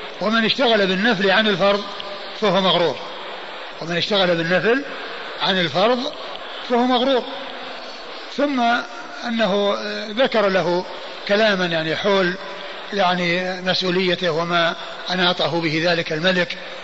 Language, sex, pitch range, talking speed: Arabic, male, 180-235 Hz, 100 wpm